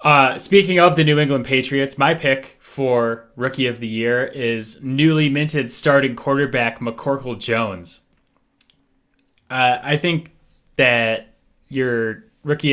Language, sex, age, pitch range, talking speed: English, male, 10-29, 110-135 Hz, 125 wpm